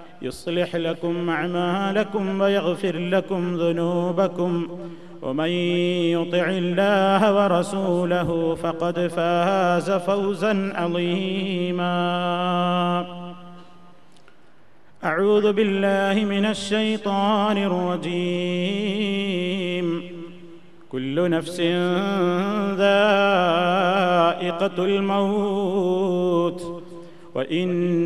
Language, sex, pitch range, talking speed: Malayalam, male, 175-195 Hz, 50 wpm